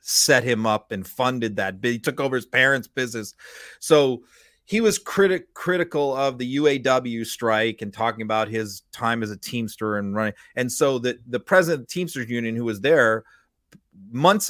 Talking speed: 180 wpm